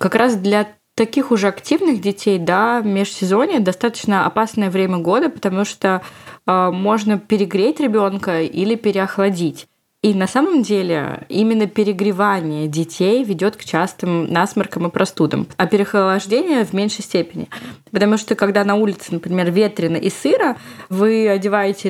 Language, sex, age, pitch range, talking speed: Russian, female, 20-39, 185-220 Hz, 140 wpm